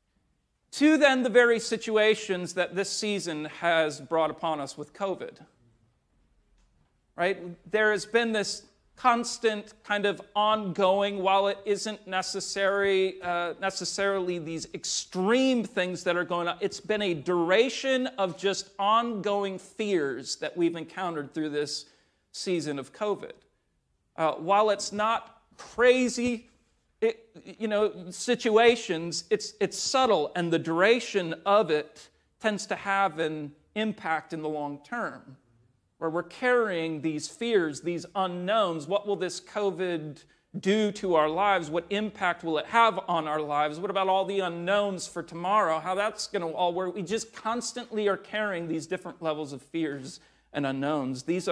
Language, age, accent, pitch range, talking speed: English, 40-59, American, 160-210 Hz, 145 wpm